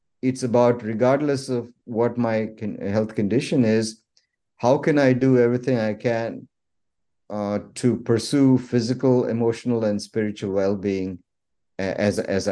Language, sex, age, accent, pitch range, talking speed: English, male, 50-69, Indian, 105-125 Hz, 125 wpm